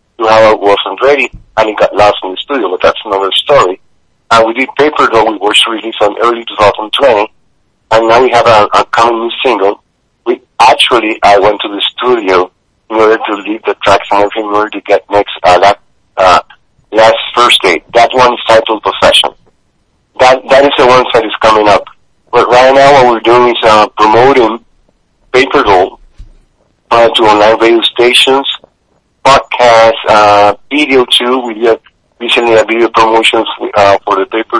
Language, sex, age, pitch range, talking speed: English, male, 50-69, 110-130 Hz, 190 wpm